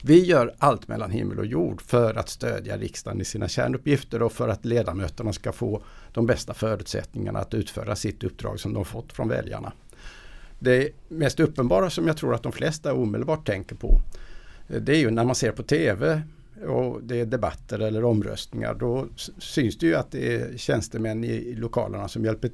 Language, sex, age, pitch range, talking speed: English, male, 60-79, 110-135 Hz, 185 wpm